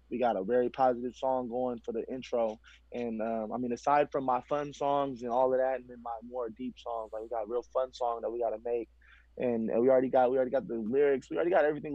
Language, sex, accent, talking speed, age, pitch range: English, male, American, 265 wpm, 20-39, 125-150 Hz